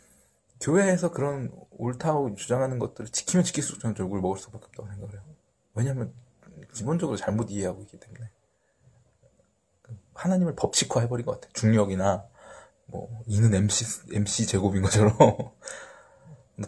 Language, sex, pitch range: Korean, male, 100-135 Hz